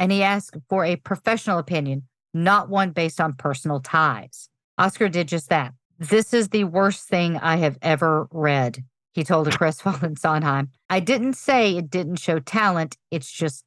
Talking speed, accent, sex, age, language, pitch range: 180 wpm, American, female, 50-69, English, 150-200 Hz